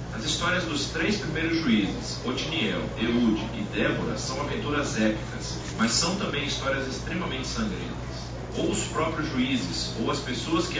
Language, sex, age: Portuguese, male, 40-59